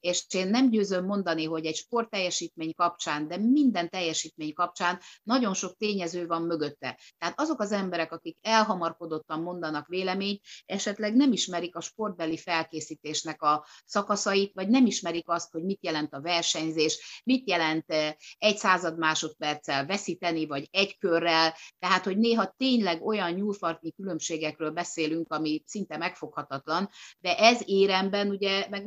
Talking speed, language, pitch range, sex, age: 140 wpm, Hungarian, 160-200 Hz, female, 50-69